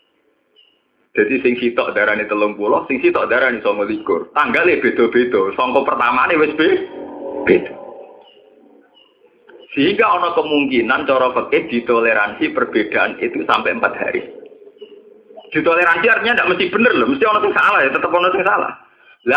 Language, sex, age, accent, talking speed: Indonesian, male, 30-49, native, 145 wpm